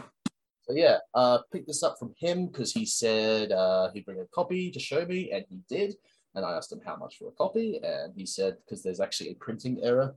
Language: English